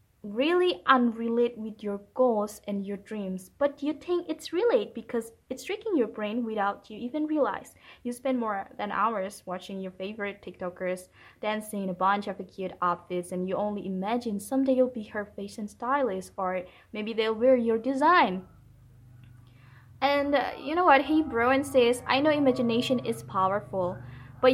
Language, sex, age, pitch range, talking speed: English, female, 20-39, 190-260 Hz, 165 wpm